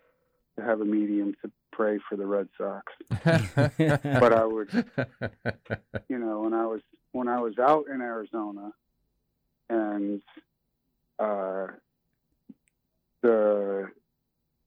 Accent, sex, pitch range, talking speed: American, male, 100-120 Hz, 110 wpm